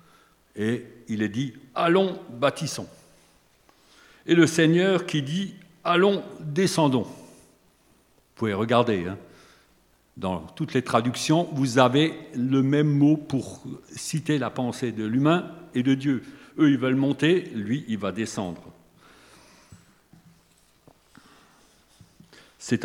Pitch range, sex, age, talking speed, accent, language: 105-150 Hz, male, 50-69, 115 wpm, French, French